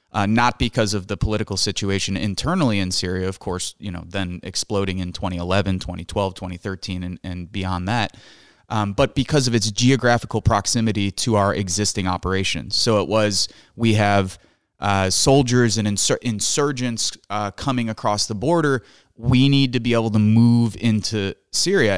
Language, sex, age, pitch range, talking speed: English, male, 30-49, 95-120 Hz, 160 wpm